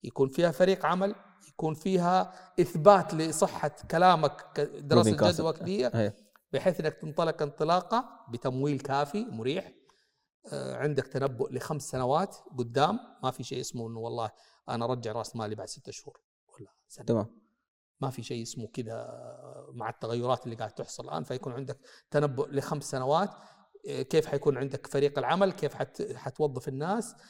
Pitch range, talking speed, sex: 140-195 Hz, 135 wpm, male